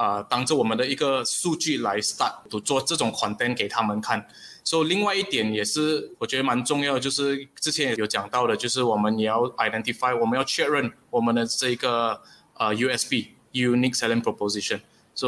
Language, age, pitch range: Chinese, 20-39, 115-145 Hz